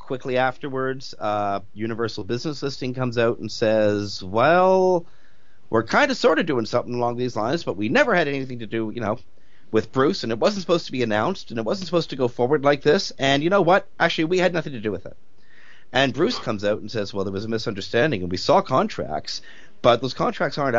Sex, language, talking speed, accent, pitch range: male, English, 230 wpm, American, 110-155 Hz